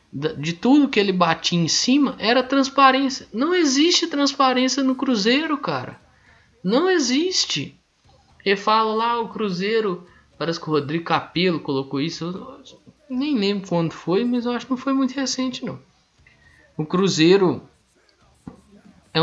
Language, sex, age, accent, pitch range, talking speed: Portuguese, male, 20-39, Brazilian, 170-260 Hz, 145 wpm